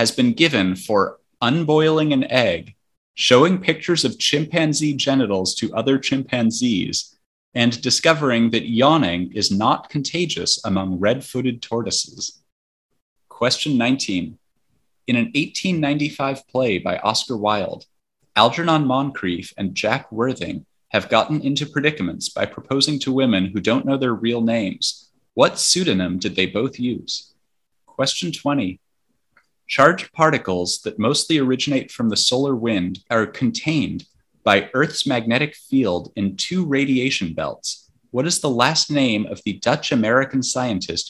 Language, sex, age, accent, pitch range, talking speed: English, male, 30-49, American, 110-145 Hz, 130 wpm